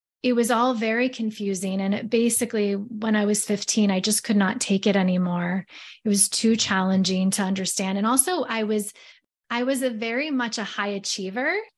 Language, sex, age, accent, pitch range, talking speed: English, female, 20-39, American, 195-230 Hz, 190 wpm